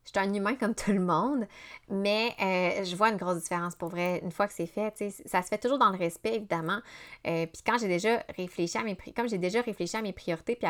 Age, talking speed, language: 20-39, 260 wpm, French